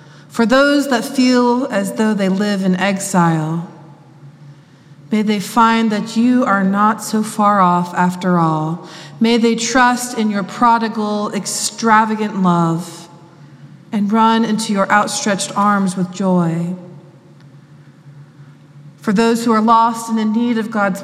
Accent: American